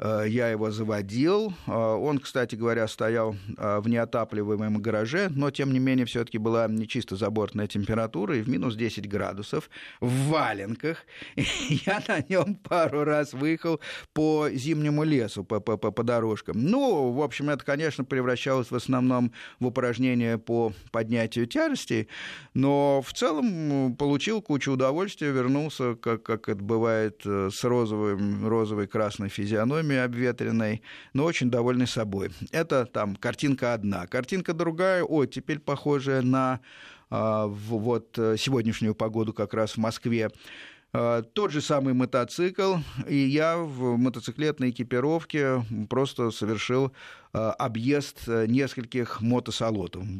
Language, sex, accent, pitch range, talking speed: Russian, male, native, 110-140 Hz, 125 wpm